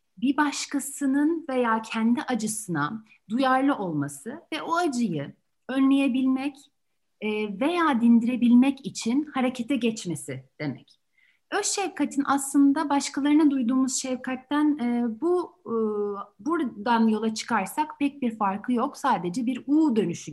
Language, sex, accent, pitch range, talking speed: Turkish, female, native, 215-280 Hz, 105 wpm